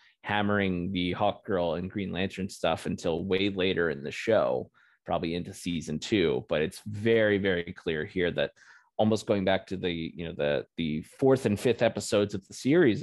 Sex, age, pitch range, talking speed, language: male, 20-39, 95-110 Hz, 190 wpm, English